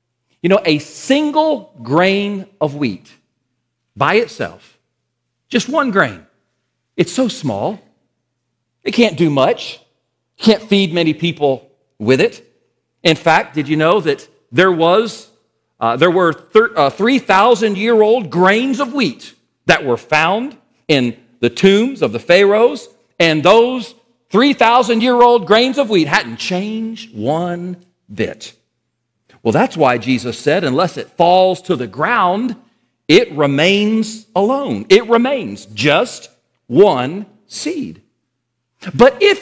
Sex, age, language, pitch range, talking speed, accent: male, 40-59, English, 140-230 Hz, 125 wpm, American